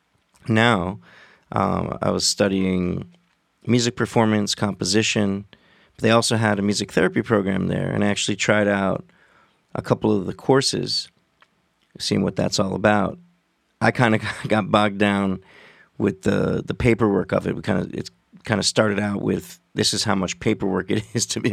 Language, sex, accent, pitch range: English, male, American, 100-115 Hz